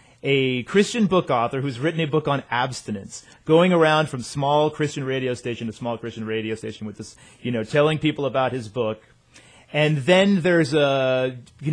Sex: male